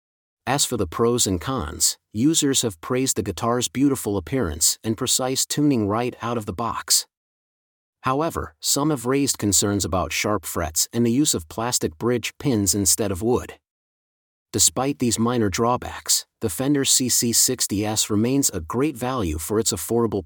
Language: English